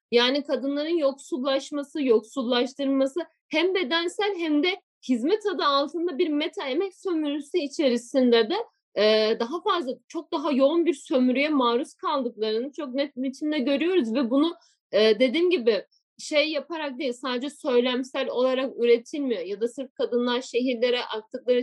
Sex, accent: female, native